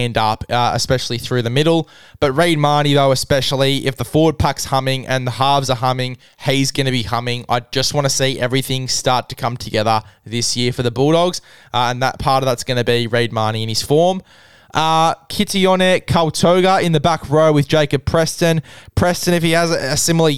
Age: 20-39